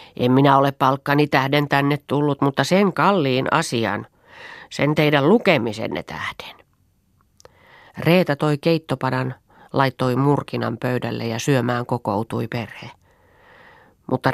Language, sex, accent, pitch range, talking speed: Finnish, female, native, 115-145 Hz, 110 wpm